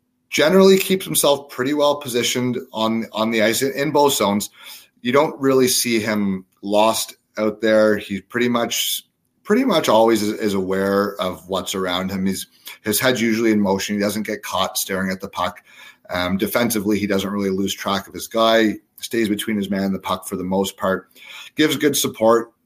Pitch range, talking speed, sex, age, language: 100-120 Hz, 190 wpm, male, 30-49, English